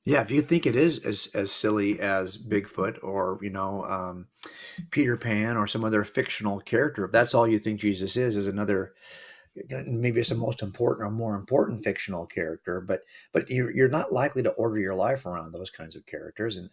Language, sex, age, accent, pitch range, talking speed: English, male, 50-69, American, 100-125 Hz, 205 wpm